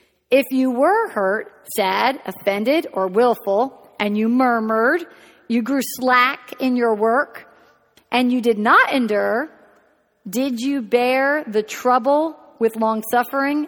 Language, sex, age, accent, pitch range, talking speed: English, female, 50-69, American, 220-280 Hz, 130 wpm